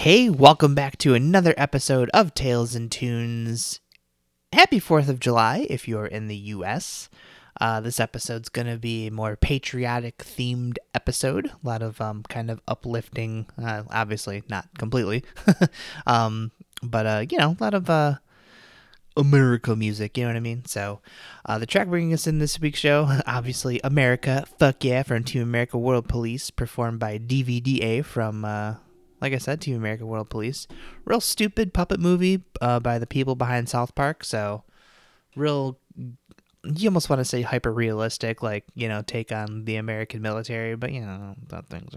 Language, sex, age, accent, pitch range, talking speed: English, male, 20-39, American, 110-140 Hz, 170 wpm